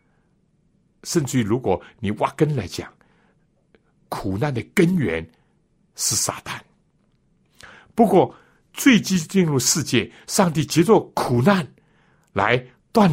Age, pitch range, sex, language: 60-79, 105-165 Hz, male, Chinese